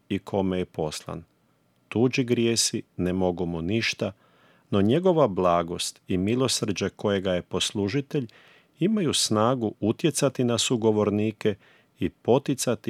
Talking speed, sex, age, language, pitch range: 115 wpm, male, 40-59, Croatian, 95-120 Hz